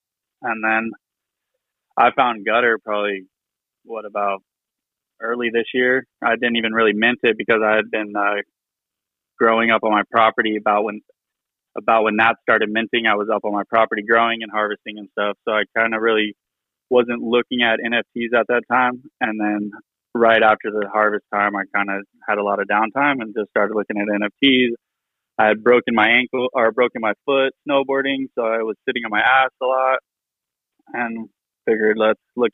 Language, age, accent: English, 20-39, American